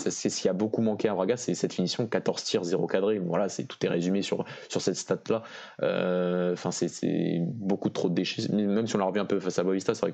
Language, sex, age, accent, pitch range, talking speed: French, male, 20-39, French, 90-110 Hz, 260 wpm